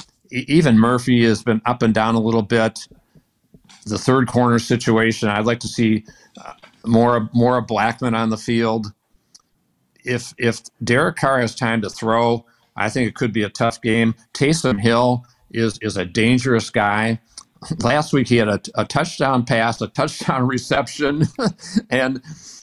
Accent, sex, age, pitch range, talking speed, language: American, male, 60-79, 110-125 Hz, 160 wpm, English